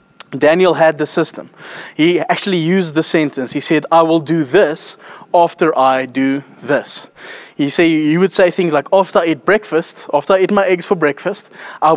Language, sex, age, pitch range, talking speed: English, male, 20-39, 150-190 Hz, 190 wpm